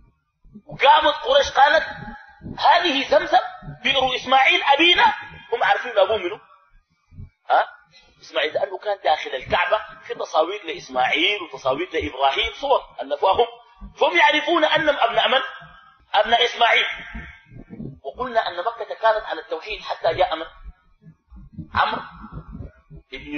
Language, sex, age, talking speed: Arabic, male, 40-59, 115 wpm